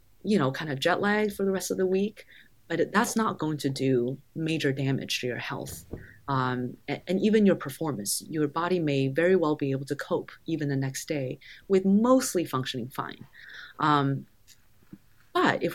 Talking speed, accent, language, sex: 185 wpm, American, English, female